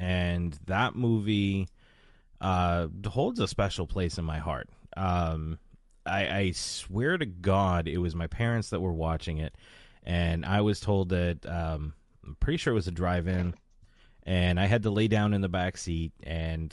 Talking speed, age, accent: 175 wpm, 30-49, American